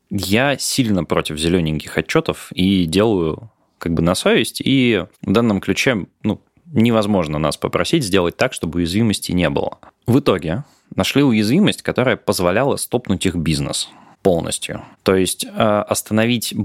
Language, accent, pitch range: Russian, native, 95-115 Hz